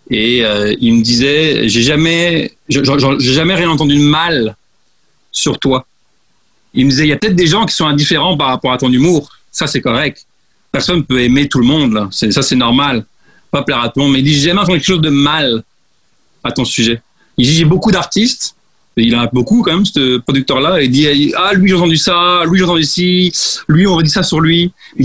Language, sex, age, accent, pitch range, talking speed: French, male, 40-59, French, 125-165 Hz, 240 wpm